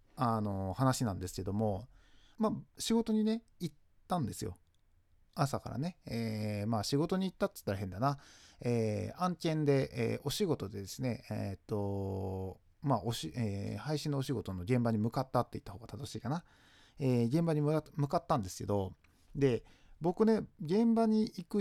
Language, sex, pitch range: Japanese, male, 100-160 Hz